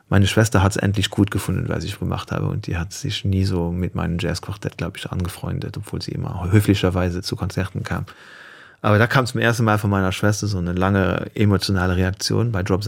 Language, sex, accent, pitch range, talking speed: German, male, German, 95-120 Hz, 215 wpm